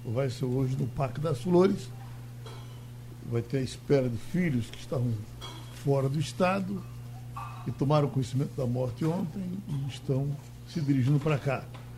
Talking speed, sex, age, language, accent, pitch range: 150 wpm, male, 60-79, Portuguese, Brazilian, 120-155 Hz